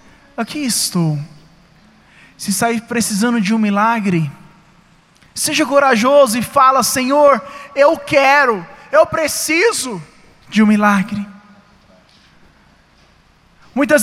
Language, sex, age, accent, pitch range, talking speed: Portuguese, male, 20-39, Brazilian, 185-255 Hz, 90 wpm